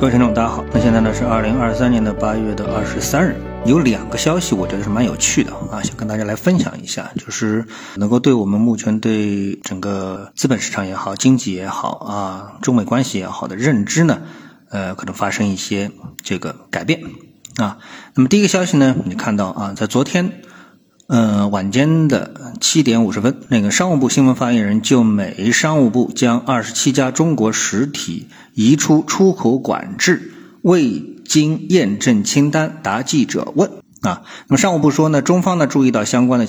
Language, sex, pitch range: Chinese, male, 110-170 Hz